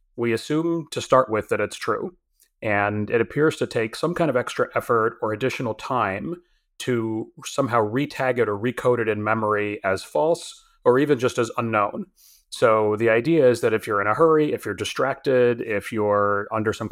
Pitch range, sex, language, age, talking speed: 105-130 Hz, male, English, 30-49, 190 wpm